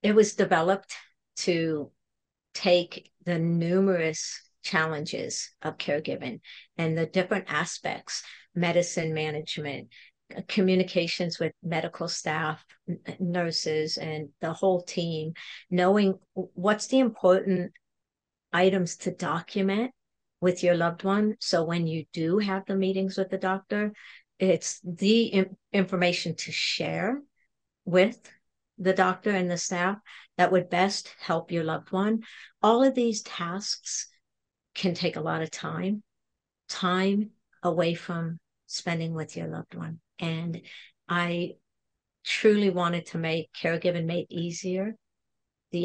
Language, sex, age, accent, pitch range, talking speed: English, female, 50-69, American, 165-195 Hz, 120 wpm